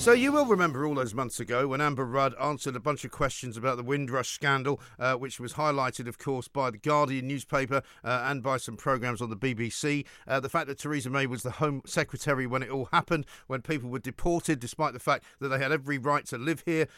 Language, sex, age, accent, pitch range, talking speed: English, male, 50-69, British, 130-160 Hz, 235 wpm